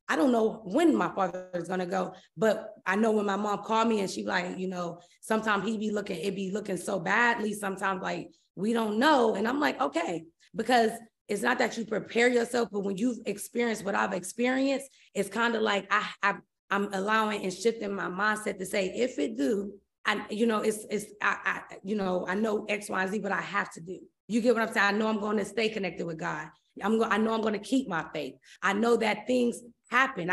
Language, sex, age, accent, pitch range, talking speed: English, female, 20-39, American, 190-230 Hz, 235 wpm